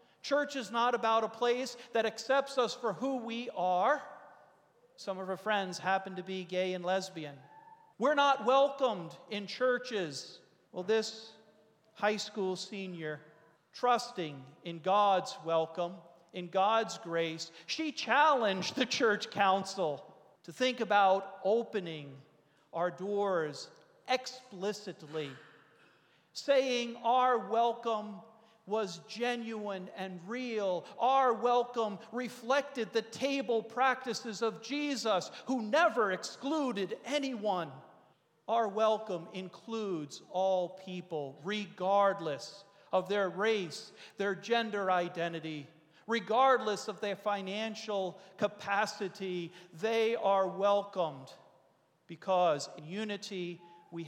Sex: male